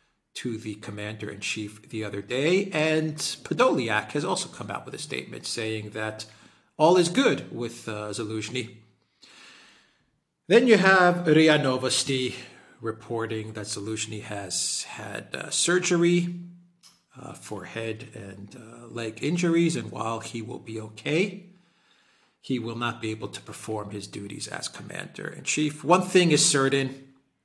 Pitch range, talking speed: 105-135 Hz, 140 wpm